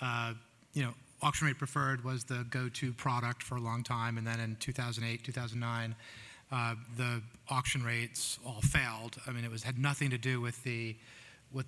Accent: American